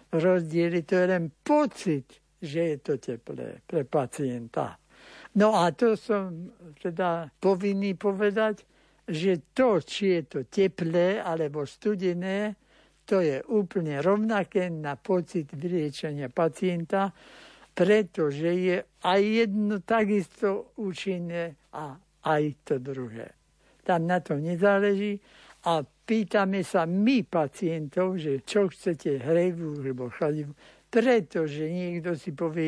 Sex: male